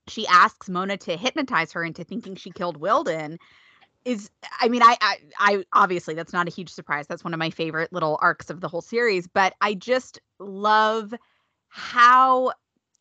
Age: 20-39